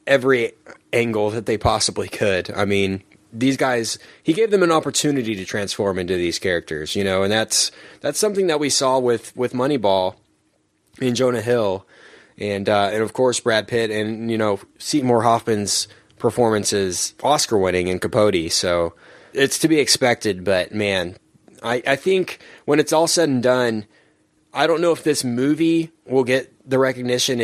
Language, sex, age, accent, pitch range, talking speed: English, male, 20-39, American, 105-130 Hz, 170 wpm